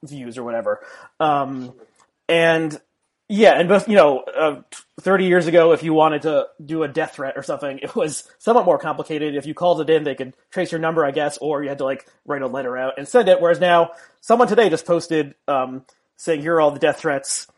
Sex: male